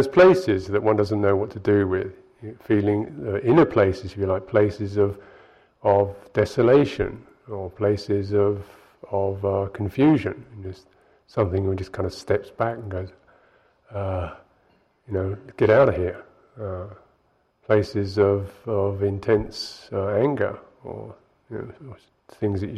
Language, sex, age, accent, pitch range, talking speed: English, male, 50-69, British, 100-115 Hz, 150 wpm